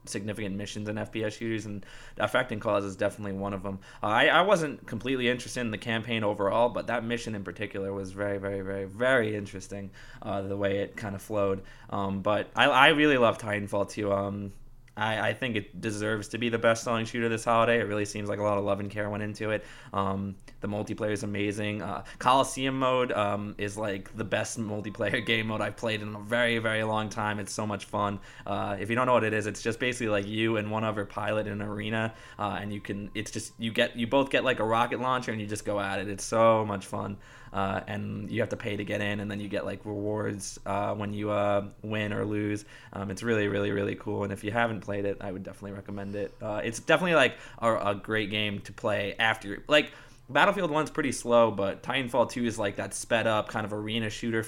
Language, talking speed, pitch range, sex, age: English, 230 wpm, 100-115 Hz, male, 20-39